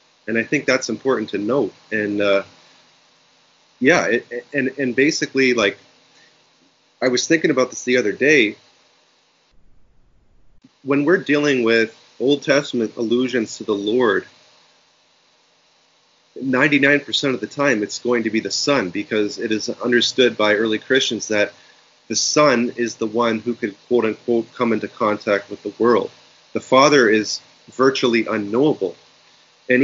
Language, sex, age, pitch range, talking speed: English, male, 30-49, 105-130 Hz, 140 wpm